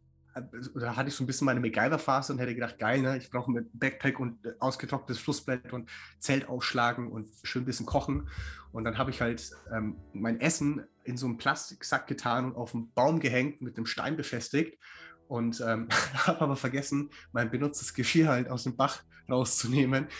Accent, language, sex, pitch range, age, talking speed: German, German, male, 110-130 Hz, 30-49, 190 wpm